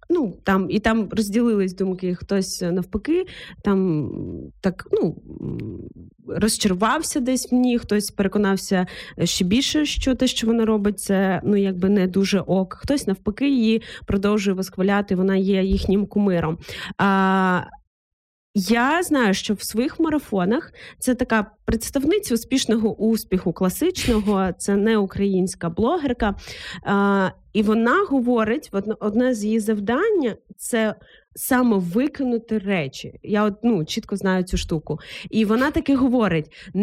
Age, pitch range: 20-39, 190-245 Hz